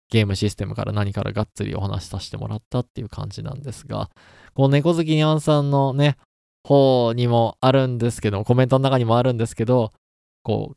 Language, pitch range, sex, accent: Japanese, 105-130 Hz, male, native